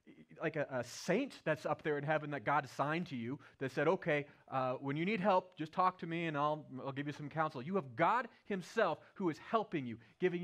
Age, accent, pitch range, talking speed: 30-49, American, 155-215 Hz, 240 wpm